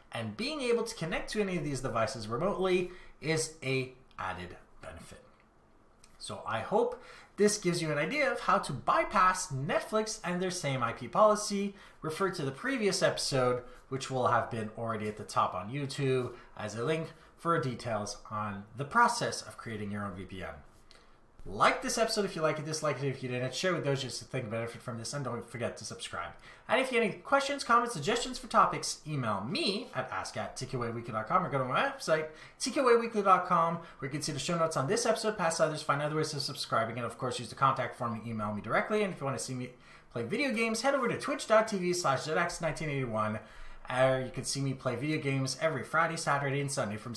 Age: 30-49